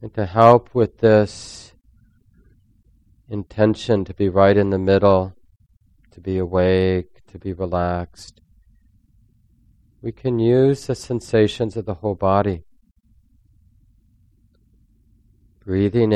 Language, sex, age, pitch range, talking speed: English, male, 40-59, 95-105 Hz, 105 wpm